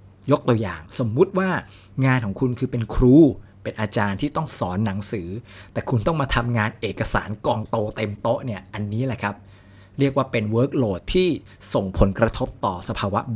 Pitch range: 100-130 Hz